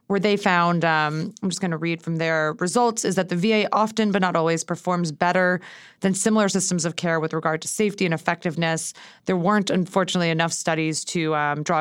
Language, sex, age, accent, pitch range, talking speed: English, female, 20-39, American, 165-200 Hz, 210 wpm